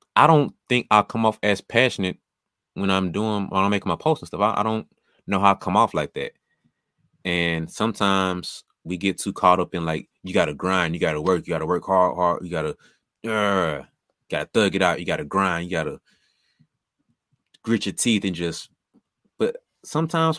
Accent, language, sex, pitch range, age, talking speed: American, English, male, 85-110 Hz, 20-39, 195 wpm